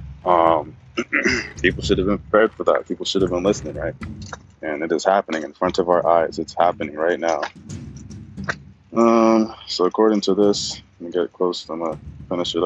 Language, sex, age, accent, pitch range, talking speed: English, male, 20-39, American, 85-95 Hz, 195 wpm